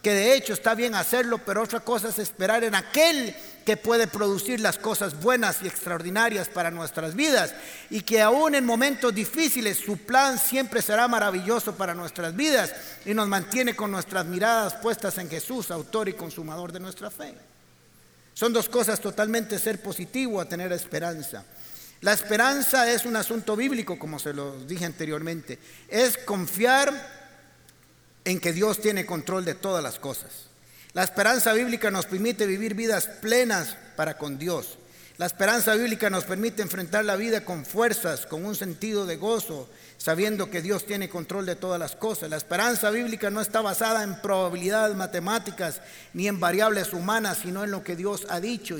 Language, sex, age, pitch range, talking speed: Spanish, male, 50-69, 180-230 Hz, 170 wpm